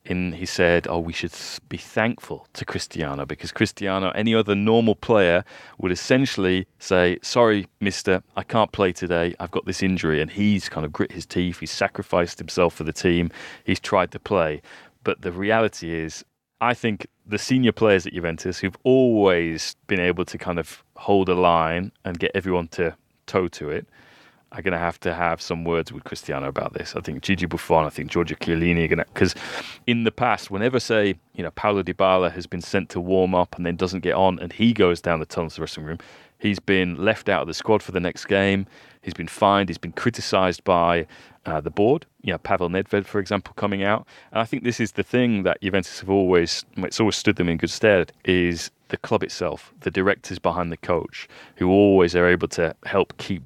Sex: male